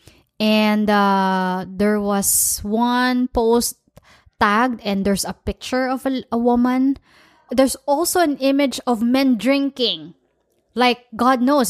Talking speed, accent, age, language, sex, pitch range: 130 wpm, Filipino, 20-39, English, female, 210-275 Hz